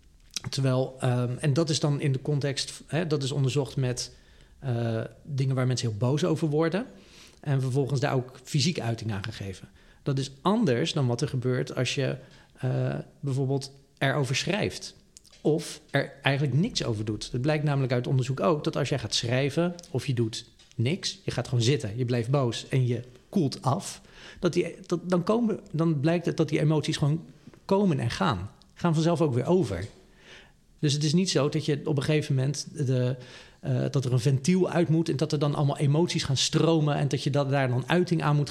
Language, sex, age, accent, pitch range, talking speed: English, male, 40-59, Dutch, 130-160 Hz, 200 wpm